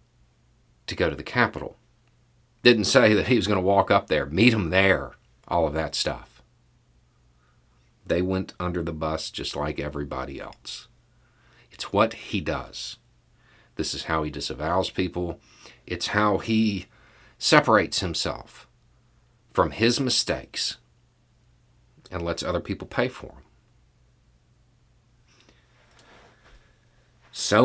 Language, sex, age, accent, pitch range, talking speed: English, male, 40-59, American, 80-115 Hz, 125 wpm